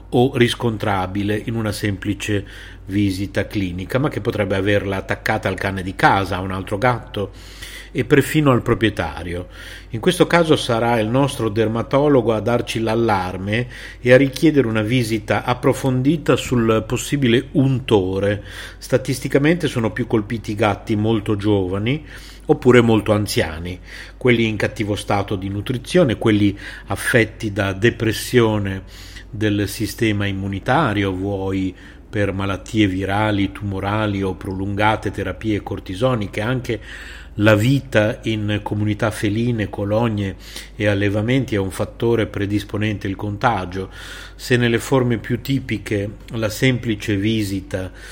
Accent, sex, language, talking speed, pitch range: native, male, Italian, 125 wpm, 100-120 Hz